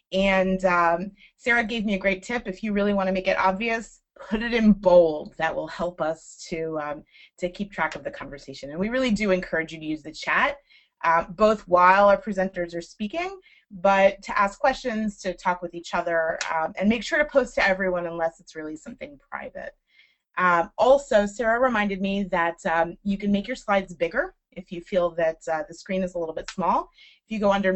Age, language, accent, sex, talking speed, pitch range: 30-49, English, American, female, 215 wpm, 175-235 Hz